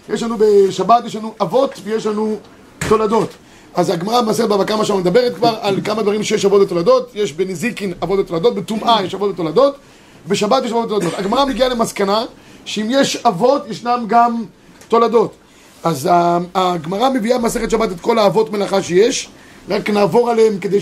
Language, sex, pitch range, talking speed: Hebrew, male, 190-235 Hz, 165 wpm